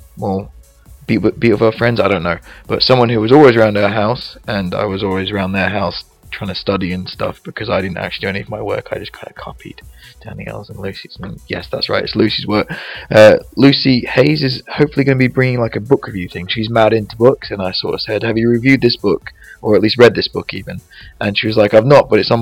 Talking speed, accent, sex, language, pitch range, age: 260 wpm, British, male, English, 105-120 Hz, 20-39